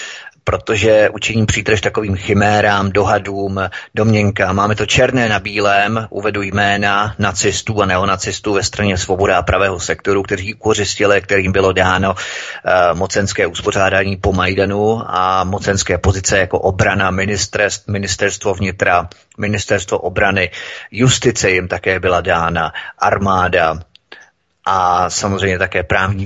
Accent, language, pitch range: native, Czech, 95-110 Hz